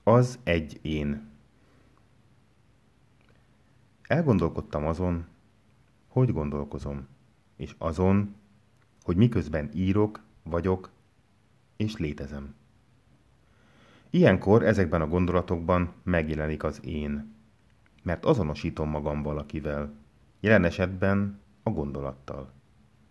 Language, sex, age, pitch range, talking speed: Hungarian, male, 30-49, 75-110 Hz, 80 wpm